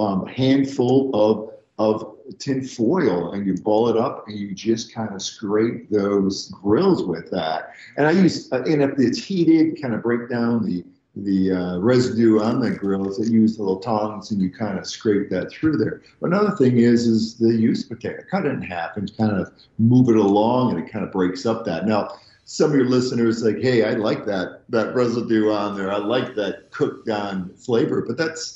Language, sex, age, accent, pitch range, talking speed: English, male, 50-69, American, 100-130 Hz, 215 wpm